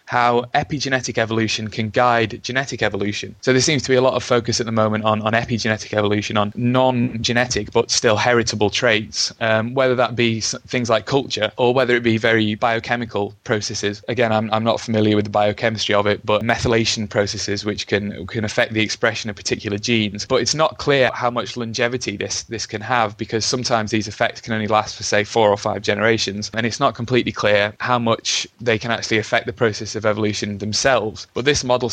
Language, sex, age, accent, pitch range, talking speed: English, male, 20-39, British, 105-120 Hz, 200 wpm